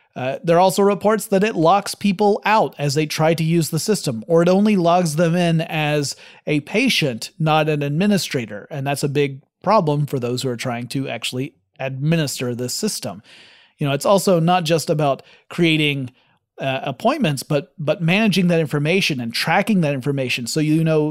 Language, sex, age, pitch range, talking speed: English, male, 30-49, 145-185 Hz, 190 wpm